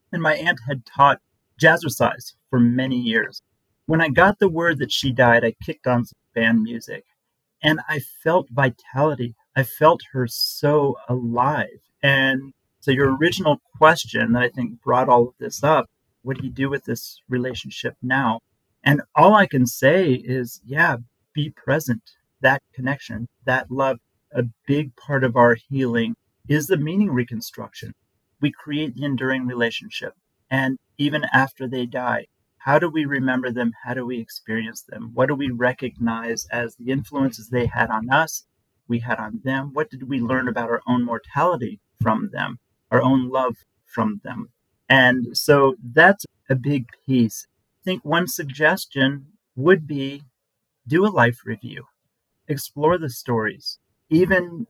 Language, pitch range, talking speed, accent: English, 120-145 Hz, 160 wpm, American